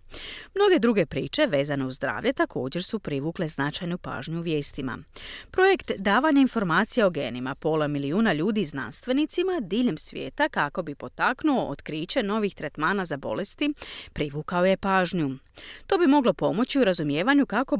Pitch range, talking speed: 160-255 Hz, 145 wpm